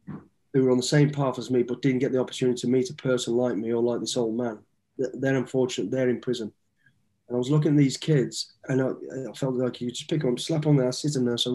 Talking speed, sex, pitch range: 290 wpm, male, 125-145 Hz